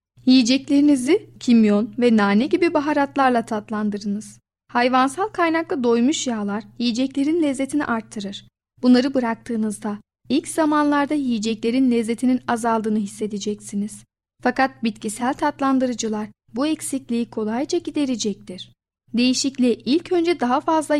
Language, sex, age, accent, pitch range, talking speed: Turkish, female, 40-59, native, 220-280 Hz, 95 wpm